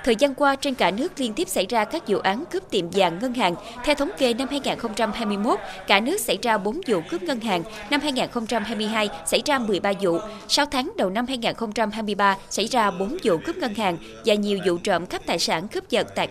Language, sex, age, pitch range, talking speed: Vietnamese, female, 20-39, 195-275 Hz, 220 wpm